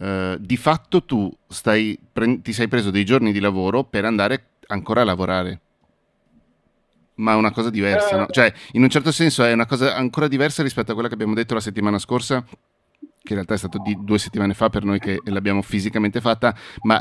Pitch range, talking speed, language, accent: 95-115 Hz, 210 wpm, Italian, native